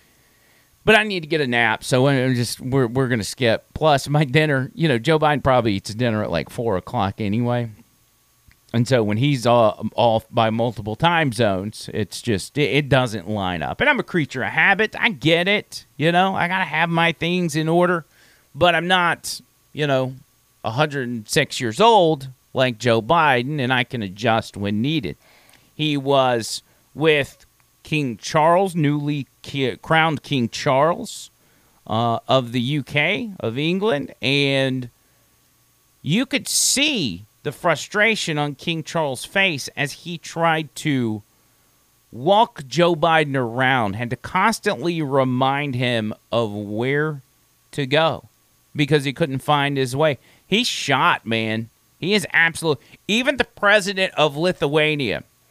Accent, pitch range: American, 120-160 Hz